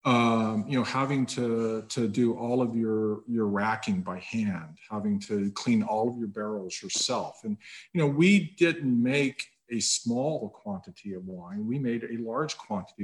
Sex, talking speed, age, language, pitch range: male, 175 wpm, 50-69, English, 110-160 Hz